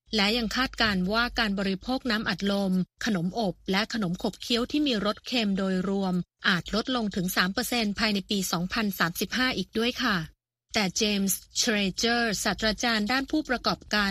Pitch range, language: 195-240 Hz, Thai